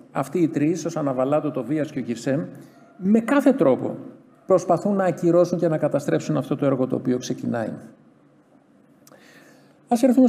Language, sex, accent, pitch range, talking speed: Greek, male, native, 140-205 Hz, 155 wpm